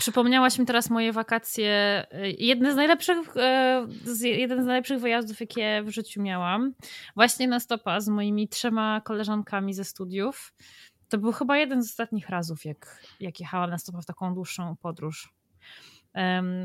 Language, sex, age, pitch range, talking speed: Polish, female, 20-39, 190-220 Hz, 155 wpm